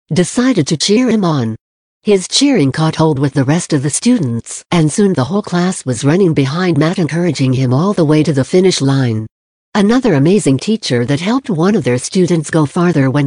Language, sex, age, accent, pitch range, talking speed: English, female, 60-79, American, 140-180 Hz, 205 wpm